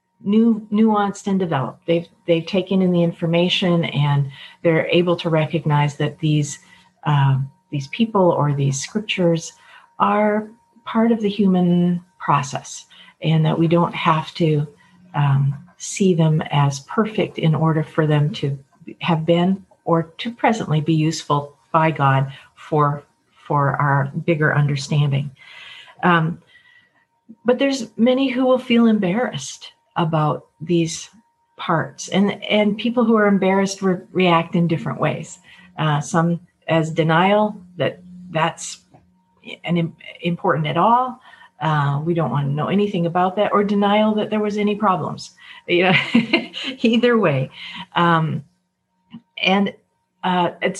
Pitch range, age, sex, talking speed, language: 160-210 Hz, 50-69, female, 130 wpm, English